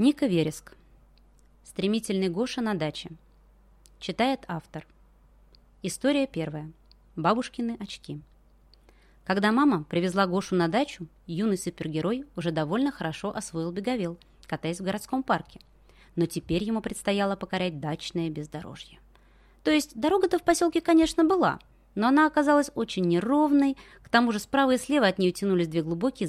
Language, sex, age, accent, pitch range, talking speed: Russian, female, 20-39, native, 170-240 Hz, 135 wpm